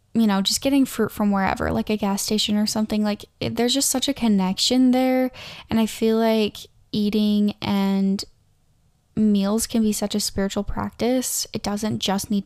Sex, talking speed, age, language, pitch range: female, 185 wpm, 10-29, English, 195-235 Hz